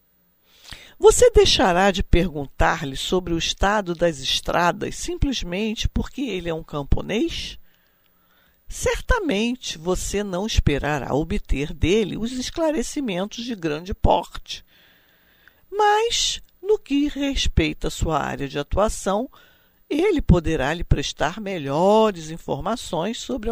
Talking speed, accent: 105 wpm, Brazilian